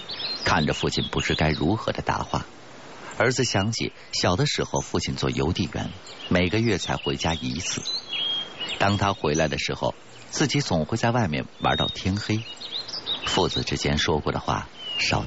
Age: 50-69